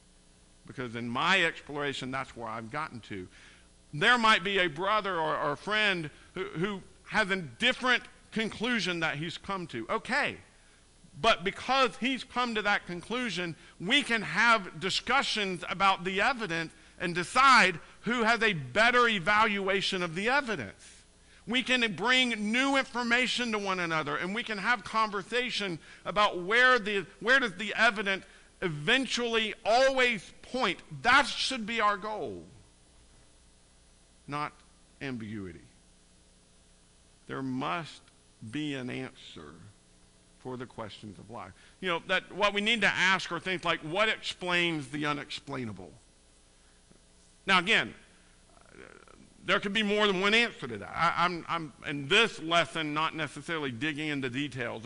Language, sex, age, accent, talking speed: English, male, 50-69, American, 145 wpm